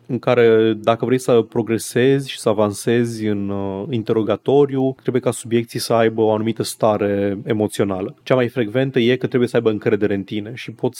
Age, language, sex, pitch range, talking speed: 30-49, Romanian, male, 110-135 Hz, 180 wpm